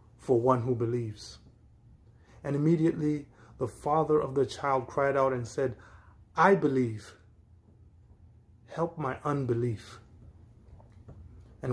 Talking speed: 105 wpm